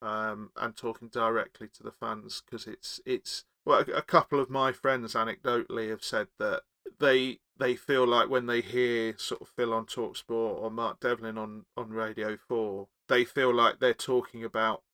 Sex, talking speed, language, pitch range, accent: male, 185 wpm, English, 110-130 Hz, British